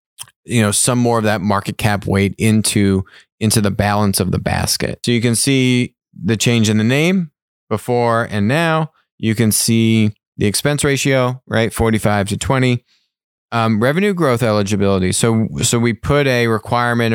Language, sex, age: English, male, 20-39